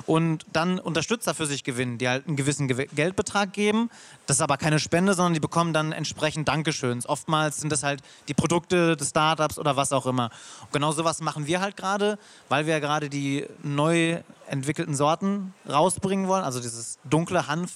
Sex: male